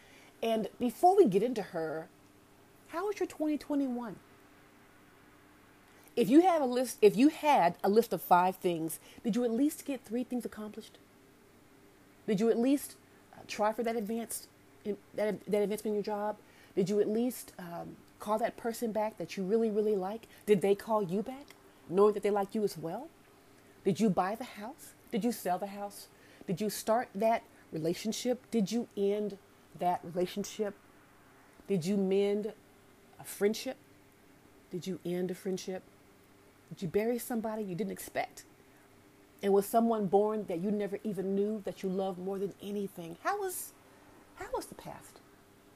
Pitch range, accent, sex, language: 185-225 Hz, American, female, English